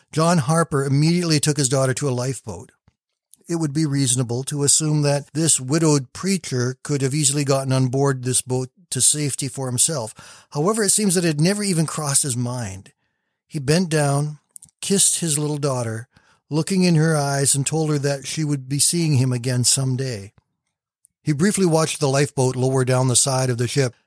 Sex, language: male, English